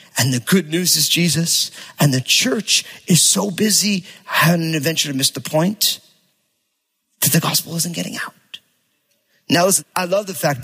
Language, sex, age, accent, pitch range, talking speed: English, male, 30-49, American, 145-180 Hz, 175 wpm